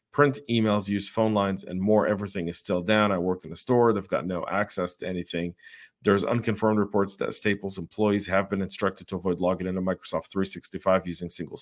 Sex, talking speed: male, 200 wpm